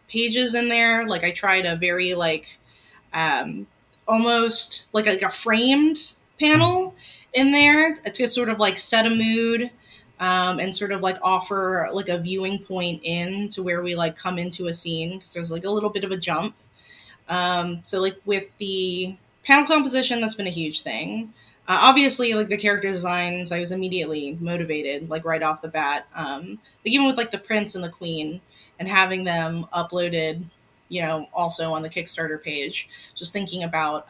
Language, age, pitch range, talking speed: English, 20-39, 175-230 Hz, 185 wpm